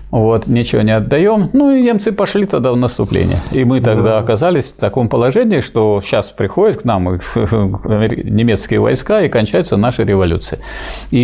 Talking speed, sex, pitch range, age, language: 160 wpm, male, 105-150 Hz, 50-69, Russian